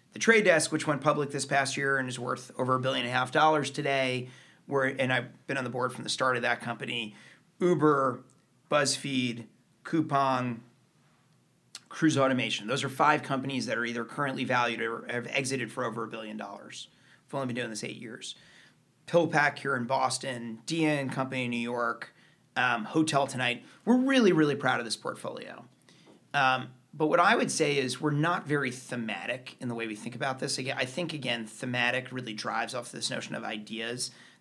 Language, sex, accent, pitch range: English, male, American, 125-150 Hz